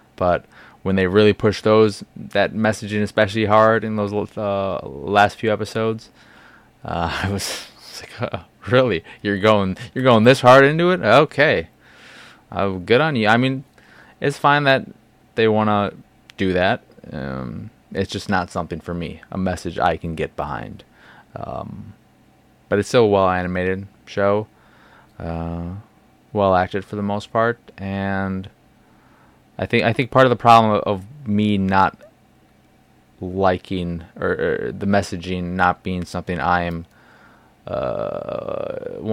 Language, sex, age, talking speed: English, male, 20-39, 140 wpm